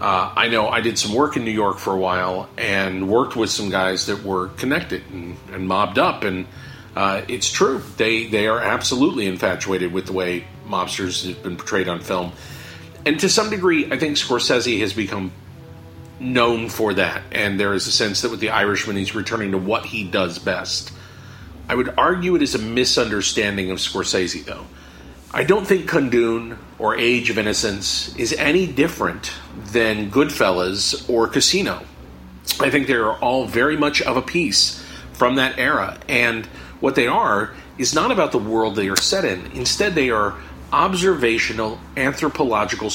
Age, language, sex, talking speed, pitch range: 40-59, English, male, 175 wpm, 95-120 Hz